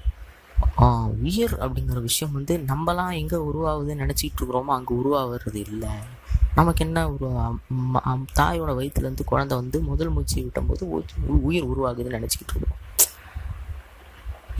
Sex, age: female, 20-39